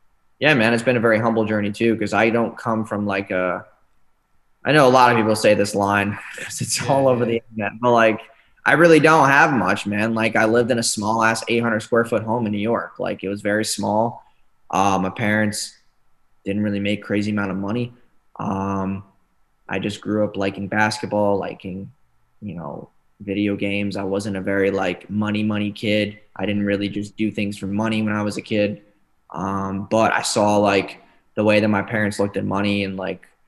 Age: 20-39